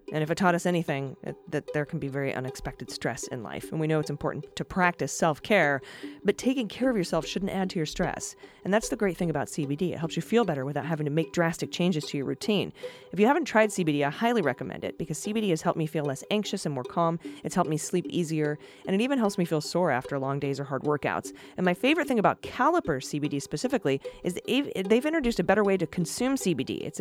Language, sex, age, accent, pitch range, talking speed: English, female, 30-49, American, 150-190 Hz, 245 wpm